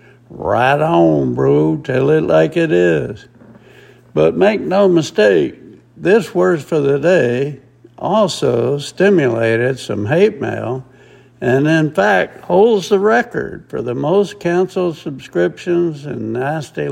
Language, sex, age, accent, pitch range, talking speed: English, male, 60-79, American, 120-160 Hz, 125 wpm